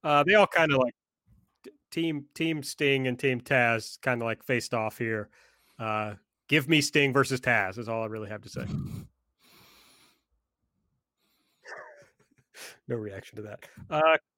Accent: American